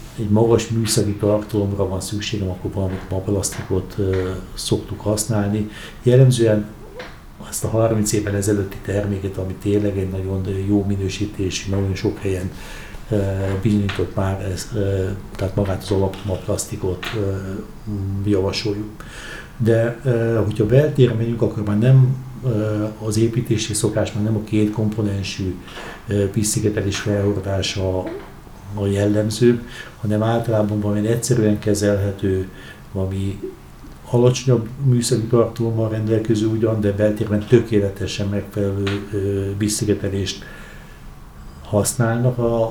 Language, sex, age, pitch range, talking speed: Hungarian, male, 60-79, 100-110 Hz, 110 wpm